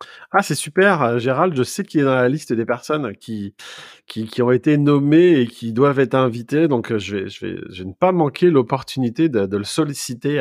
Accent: French